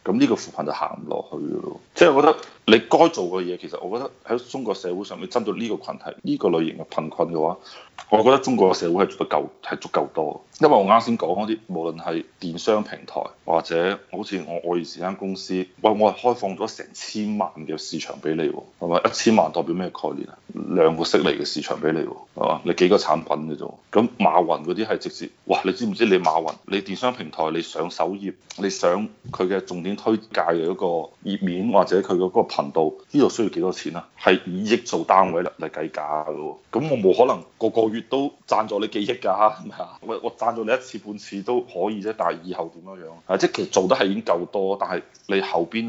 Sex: male